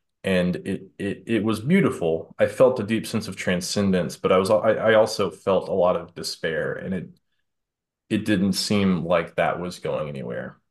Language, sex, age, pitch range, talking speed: English, male, 20-39, 90-115 Hz, 190 wpm